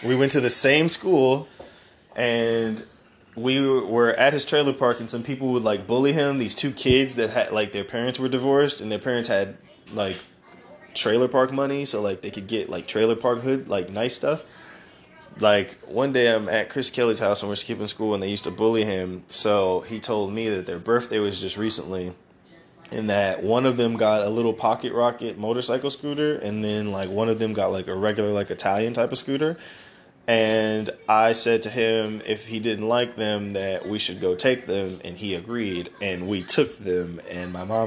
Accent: American